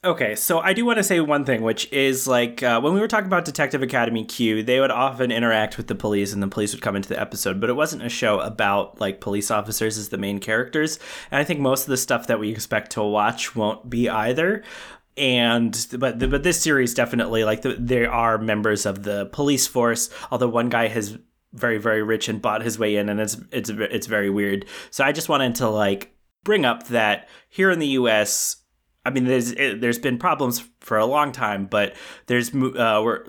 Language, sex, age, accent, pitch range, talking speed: English, male, 20-39, American, 110-135 Hz, 225 wpm